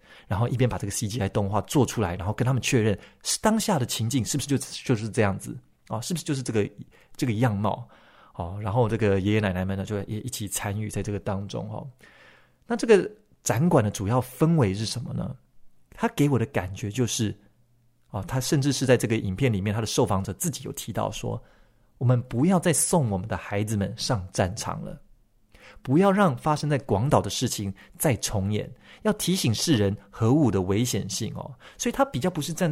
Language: Chinese